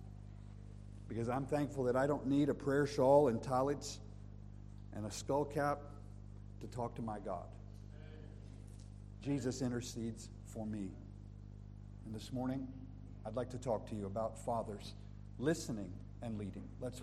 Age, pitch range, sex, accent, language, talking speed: 50-69, 100-140 Hz, male, American, English, 135 wpm